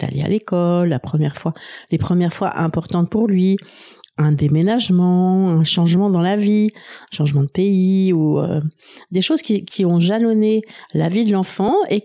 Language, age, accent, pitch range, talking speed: French, 50-69, French, 160-200 Hz, 180 wpm